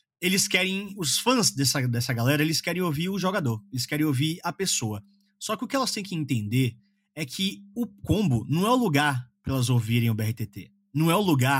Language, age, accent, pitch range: Portuguese, 30-49, Brazilian, 125-195 Hz